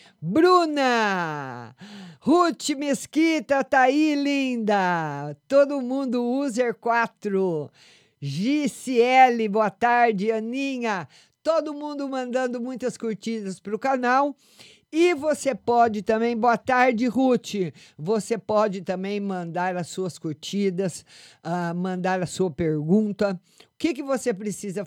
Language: Portuguese